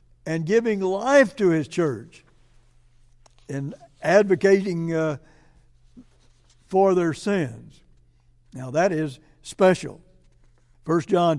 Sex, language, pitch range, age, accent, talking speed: male, English, 140-190 Hz, 60-79, American, 95 wpm